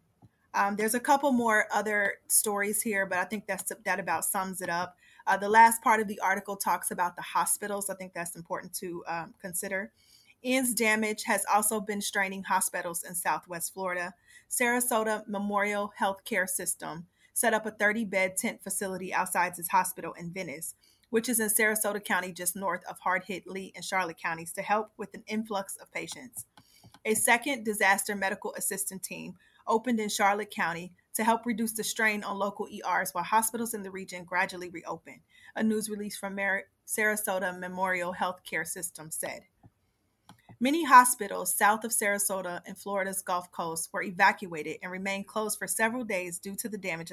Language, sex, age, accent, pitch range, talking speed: English, female, 30-49, American, 180-215 Hz, 175 wpm